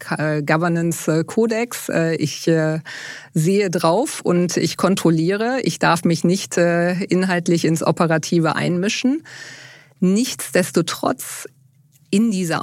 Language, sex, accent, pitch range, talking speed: German, female, German, 155-185 Hz, 85 wpm